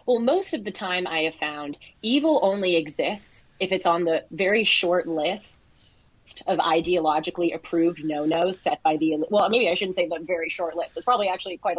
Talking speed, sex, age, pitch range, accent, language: 195 wpm, female, 30-49, 170-215 Hz, American, English